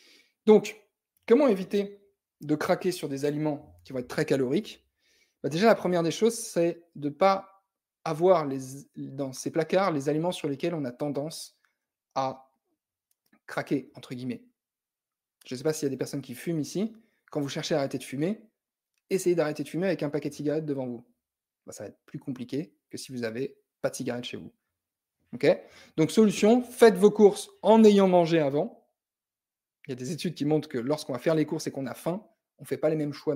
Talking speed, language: 215 wpm, French